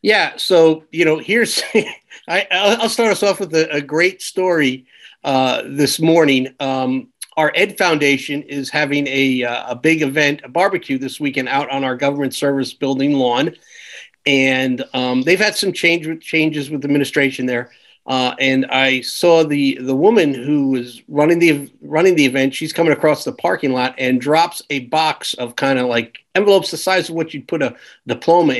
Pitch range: 135-160 Hz